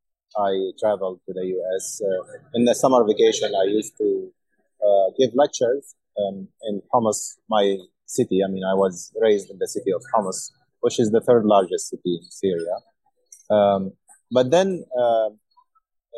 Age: 30-49